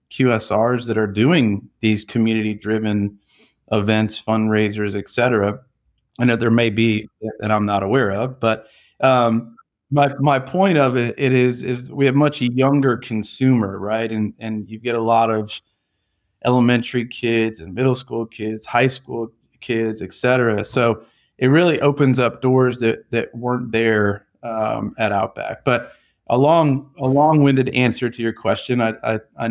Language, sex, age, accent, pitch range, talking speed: English, male, 30-49, American, 110-125 Hz, 160 wpm